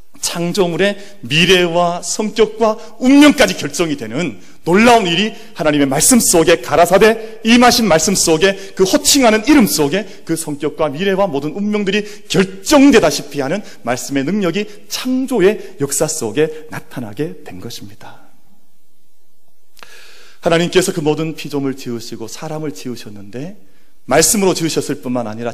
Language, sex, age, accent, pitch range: Korean, male, 40-59, native, 130-200 Hz